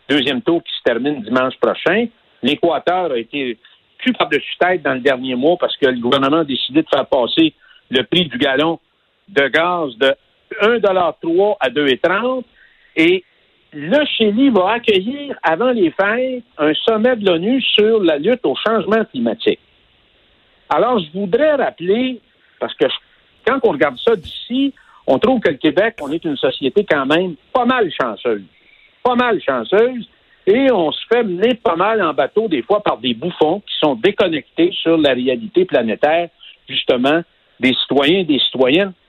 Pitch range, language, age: 170-255 Hz, French, 60-79